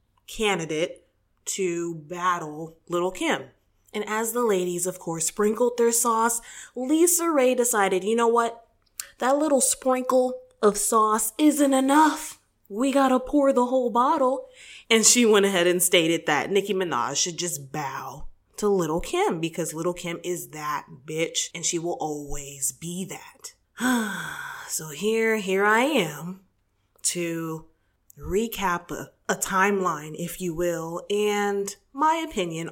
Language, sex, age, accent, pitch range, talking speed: English, female, 20-39, American, 175-245 Hz, 140 wpm